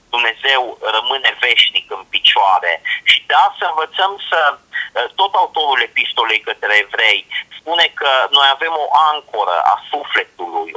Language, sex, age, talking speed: Romanian, male, 30-49, 130 wpm